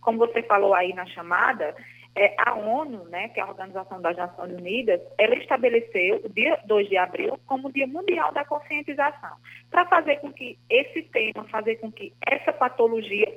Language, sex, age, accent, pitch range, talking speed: Portuguese, female, 20-39, Brazilian, 200-295 Hz, 185 wpm